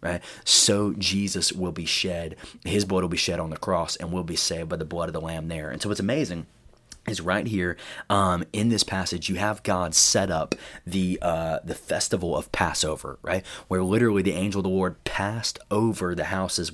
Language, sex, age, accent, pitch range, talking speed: English, male, 20-39, American, 90-110 Hz, 210 wpm